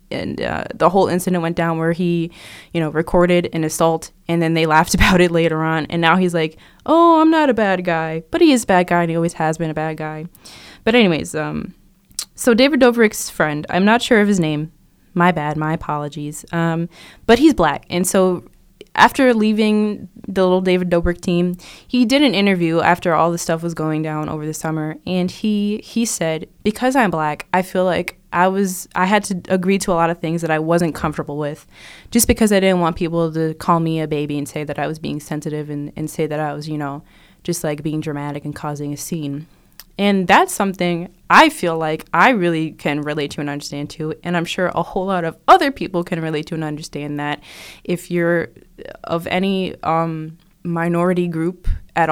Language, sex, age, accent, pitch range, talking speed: English, female, 20-39, American, 155-190 Hz, 215 wpm